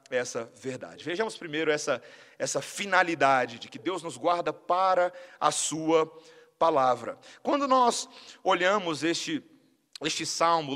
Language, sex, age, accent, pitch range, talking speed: Portuguese, male, 40-59, Brazilian, 165-245 Hz, 125 wpm